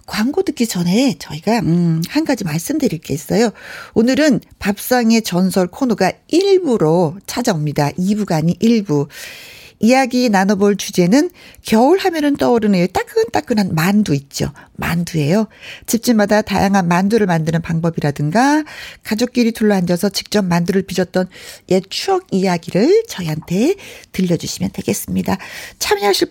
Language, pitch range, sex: Korean, 175-250 Hz, female